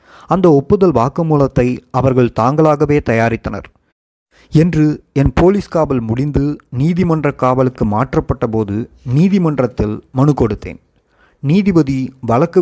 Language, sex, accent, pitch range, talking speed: Tamil, male, native, 120-150 Hz, 95 wpm